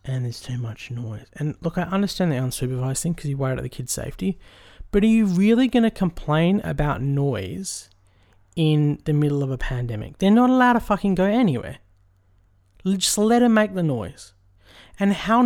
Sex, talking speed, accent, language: male, 190 wpm, Australian, English